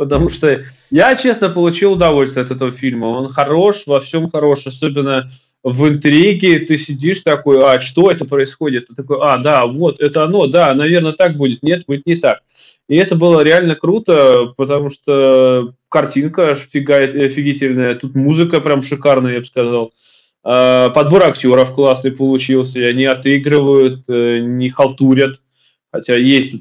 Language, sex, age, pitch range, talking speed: Russian, male, 20-39, 130-165 Hz, 150 wpm